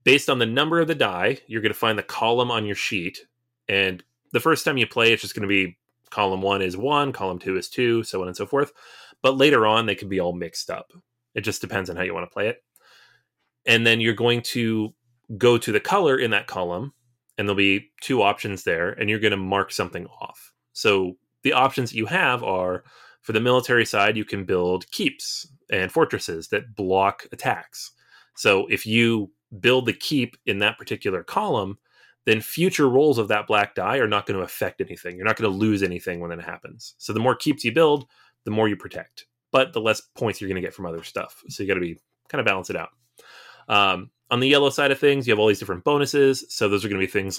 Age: 30-49